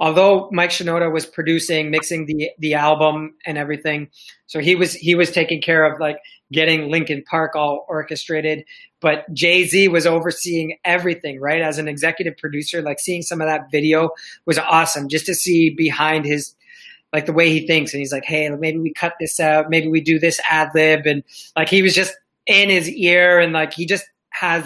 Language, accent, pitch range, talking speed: English, American, 155-175 Hz, 200 wpm